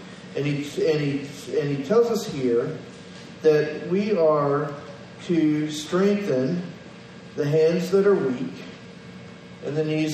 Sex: male